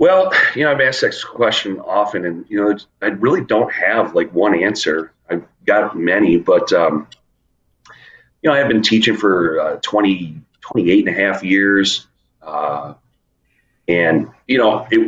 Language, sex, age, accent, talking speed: English, male, 40-59, American, 165 wpm